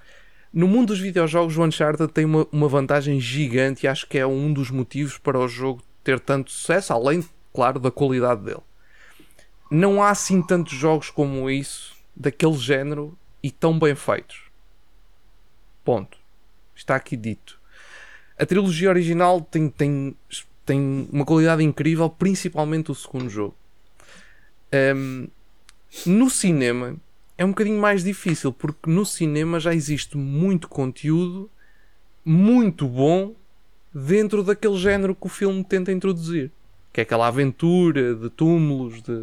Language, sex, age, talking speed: Portuguese, male, 20-39, 135 wpm